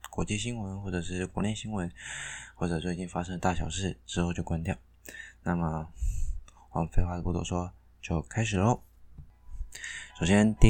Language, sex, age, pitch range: Chinese, male, 20-39, 85-110 Hz